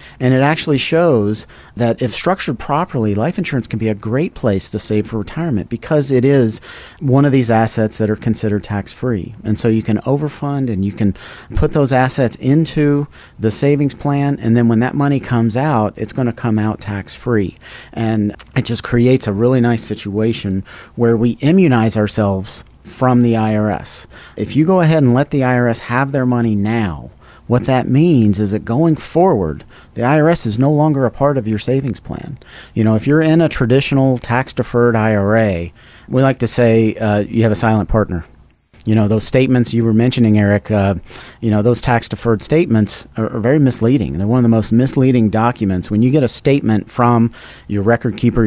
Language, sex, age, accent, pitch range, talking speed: English, male, 40-59, American, 110-130 Hz, 195 wpm